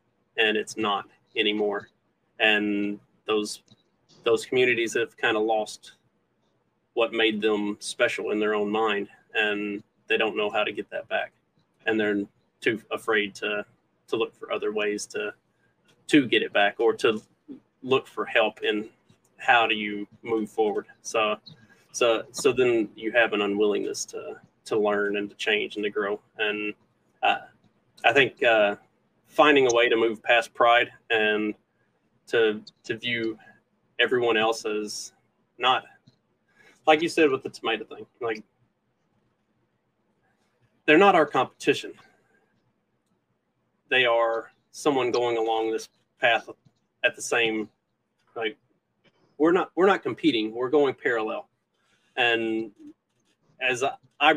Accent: American